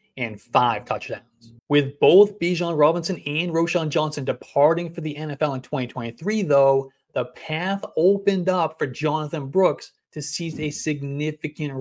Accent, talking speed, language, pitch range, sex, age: American, 140 wpm, English, 135-175 Hz, male, 30-49